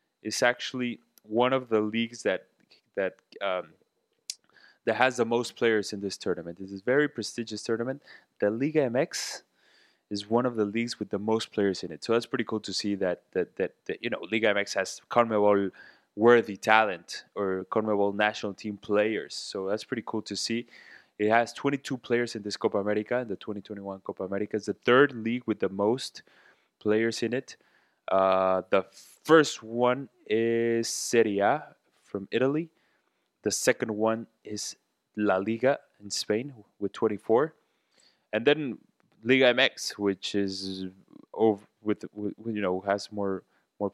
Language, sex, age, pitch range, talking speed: English, male, 20-39, 100-115 Hz, 165 wpm